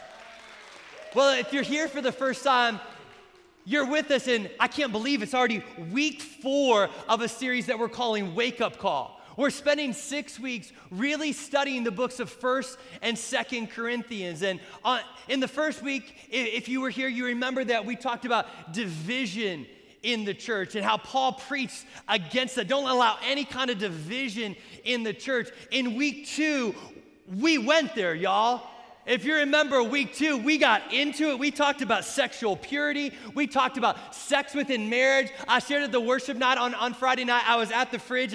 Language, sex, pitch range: English, male, 215-270 Hz